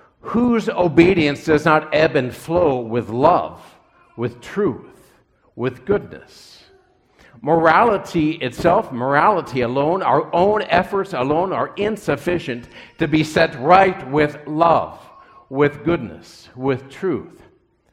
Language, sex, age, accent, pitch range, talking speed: English, male, 60-79, American, 140-180 Hz, 110 wpm